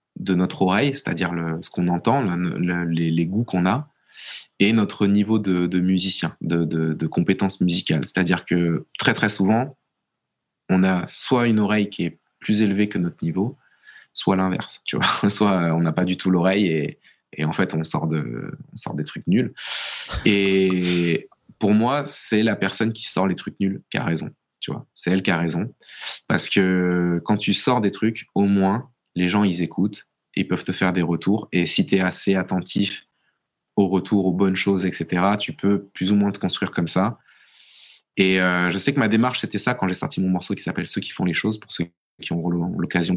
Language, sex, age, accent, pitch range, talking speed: French, male, 20-39, French, 90-105 Hz, 215 wpm